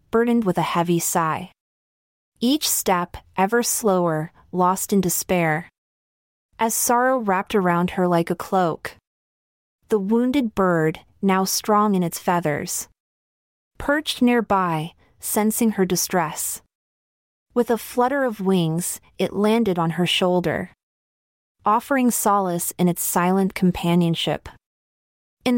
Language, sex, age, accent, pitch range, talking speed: English, female, 30-49, American, 170-230 Hz, 115 wpm